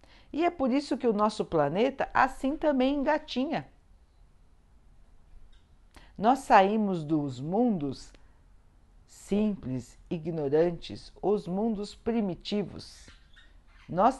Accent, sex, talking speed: Brazilian, female, 90 wpm